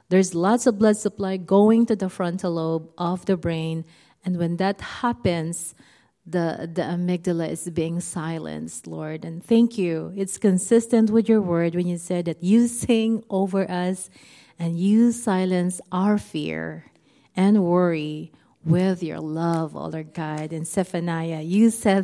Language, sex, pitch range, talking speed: English, female, 165-205 Hz, 155 wpm